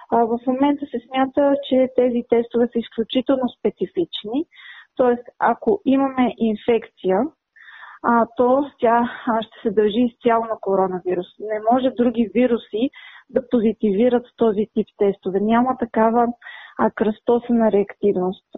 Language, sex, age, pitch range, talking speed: Bulgarian, female, 20-39, 210-255 Hz, 115 wpm